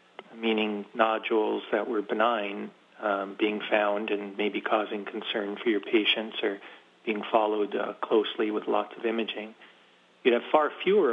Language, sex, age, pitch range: English, male, 40-59, 110-125 Hz